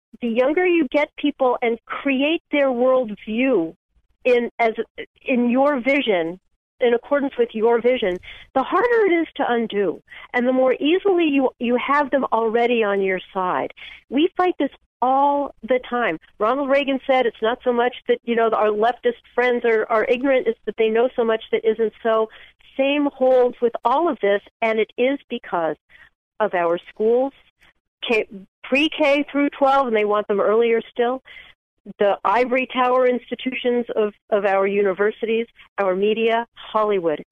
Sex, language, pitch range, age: female, English, 215-265 Hz, 50-69